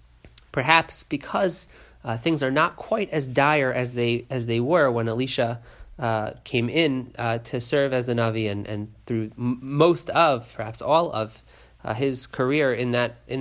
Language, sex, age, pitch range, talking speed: English, male, 30-49, 115-140 Hz, 175 wpm